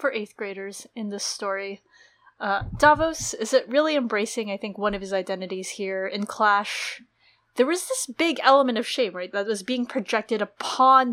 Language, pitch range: English, 195-255 Hz